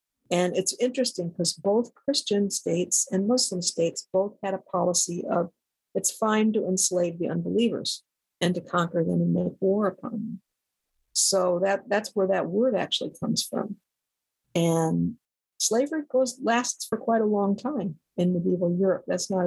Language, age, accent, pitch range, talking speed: English, 50-69, American, 175-215 Hz, 165 wpm